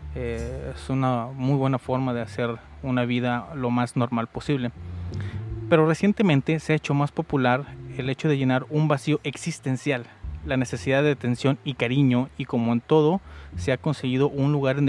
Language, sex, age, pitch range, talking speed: Spanish, male, 30-49, 120-145 Hz, 175 wpm